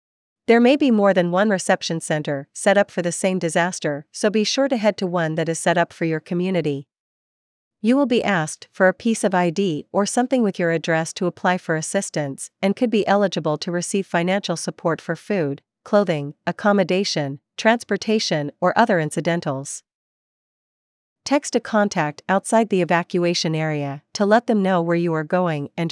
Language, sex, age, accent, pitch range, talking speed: English, female, 40-59, American, 165-210 Hz, 180 wpm